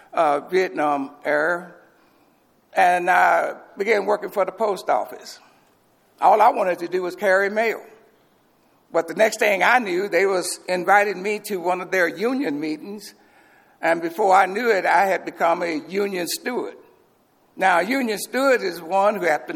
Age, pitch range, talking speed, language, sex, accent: 60-79, 175-220 Hz, 170 wpm, English, male, American